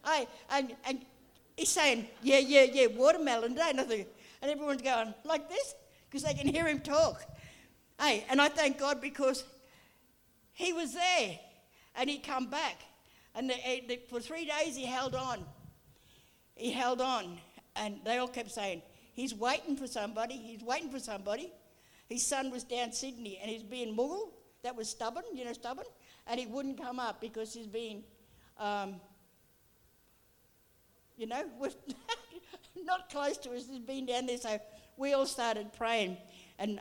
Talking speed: 165 wpm